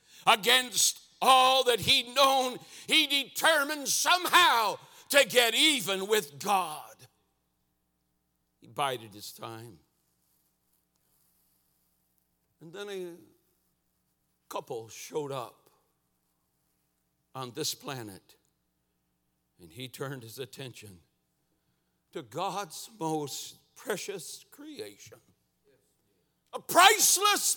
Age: 60-79